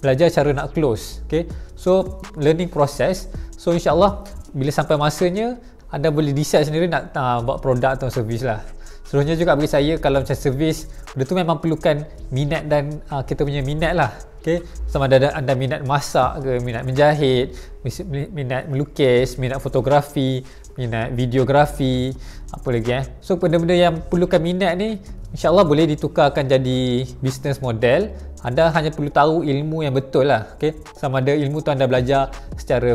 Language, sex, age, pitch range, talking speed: Malay, male, 20-39, 135-165 Hz, 160 wpm